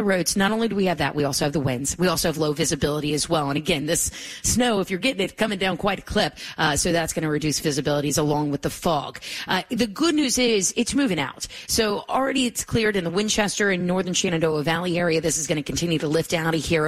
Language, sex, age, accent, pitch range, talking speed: English, female, 30-49, American, 155-205 Hz, 265 wpm